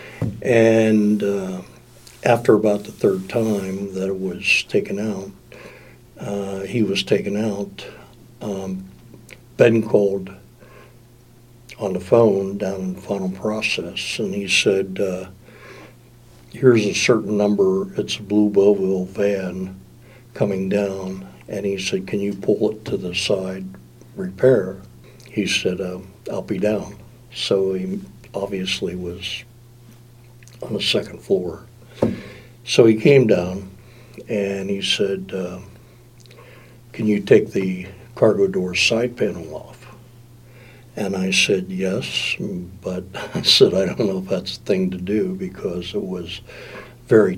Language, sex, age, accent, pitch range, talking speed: English, male, 60-79, American, 95-120 Hz, 135 wpm